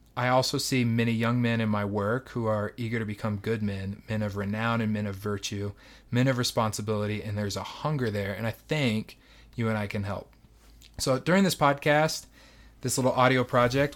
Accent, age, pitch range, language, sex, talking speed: American, 30-49, 110-130 Hz, English, male, 200 wpm